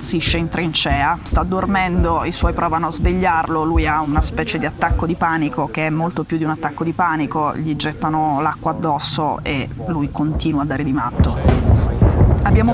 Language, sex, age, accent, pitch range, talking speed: Italian, female, 20-39, native, 160-195 Hz, 185 wpm